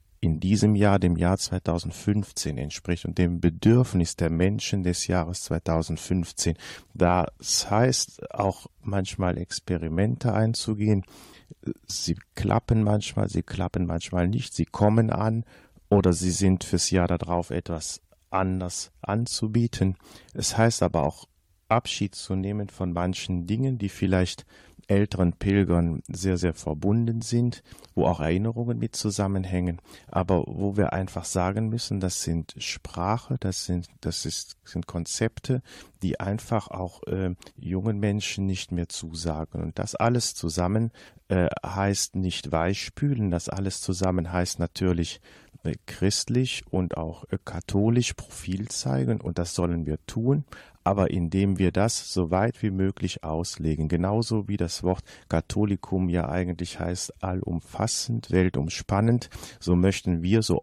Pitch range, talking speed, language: 85-105 Hz, 135 wpm, German